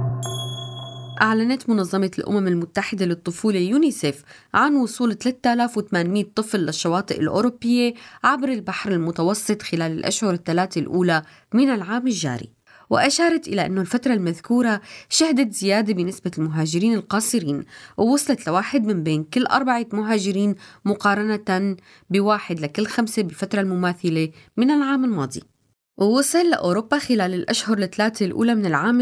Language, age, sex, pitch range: Arabic, 20-39, female, 175-235 Hz